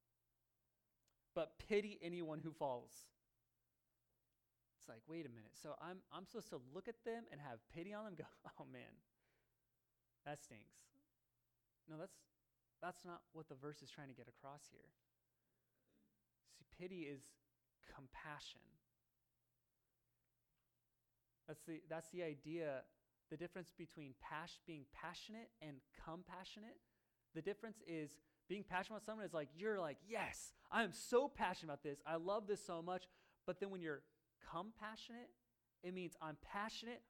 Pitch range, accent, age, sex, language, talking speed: 120-180 Hz, American, 20-39, male, English, 145 wpm